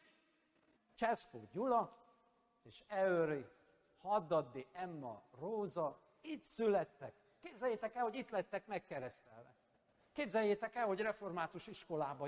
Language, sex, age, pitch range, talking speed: Hungarian, male, 60-79, 140-205 Hz, 100 wpm